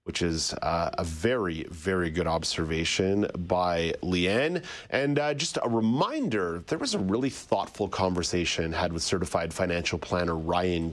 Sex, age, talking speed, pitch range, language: male, 40-59, 150 wpm, 90-130 Hz, English